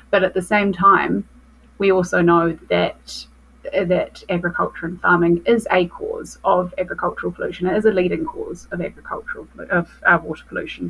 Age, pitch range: 20-39, 165-190 Hz